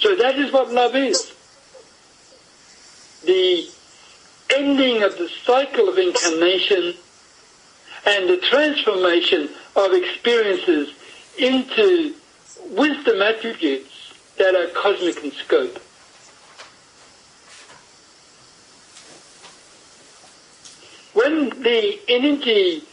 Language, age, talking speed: English, 60-79, 75 wpm